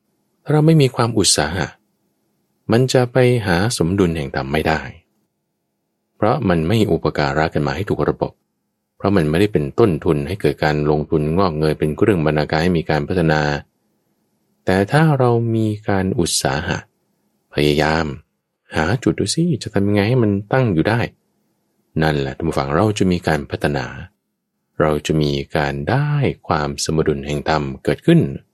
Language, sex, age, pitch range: English, male, 20-39, 75-115 Hz